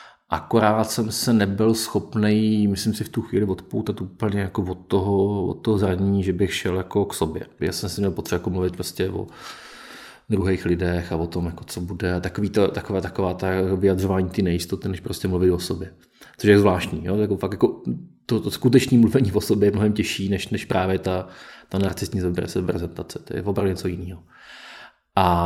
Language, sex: Czech, male